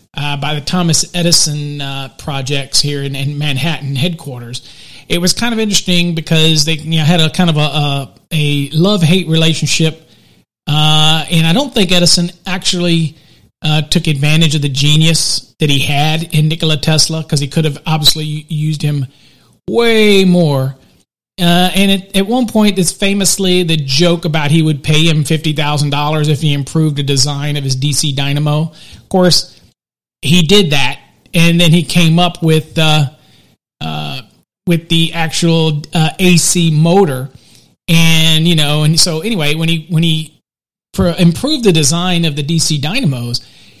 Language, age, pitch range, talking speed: English, 40-59, 150-175 Hz, 165 wpm